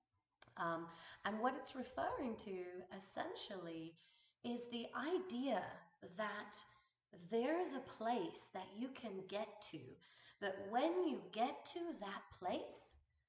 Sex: female